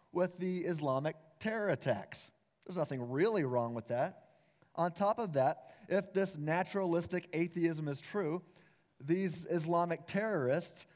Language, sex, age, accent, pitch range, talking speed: English, male, 30-49, American, 140-190 Hz, 130 wpm